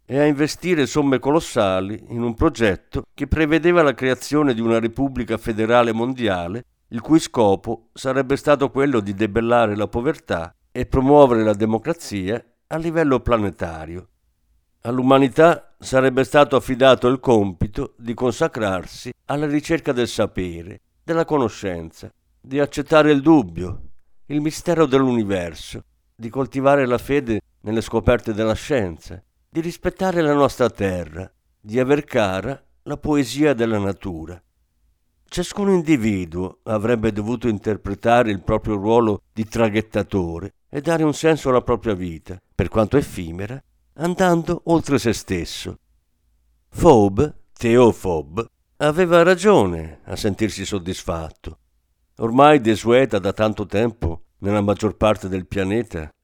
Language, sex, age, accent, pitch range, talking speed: Italian, male, 50-69, native, 95-140 Hz, 125 wpm